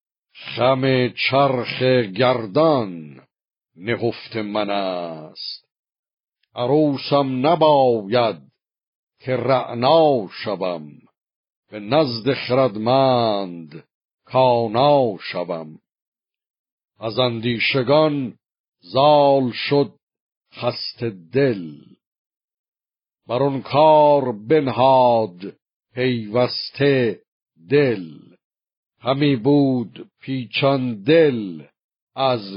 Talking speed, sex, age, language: 60 wpm, male, 50-69, Persian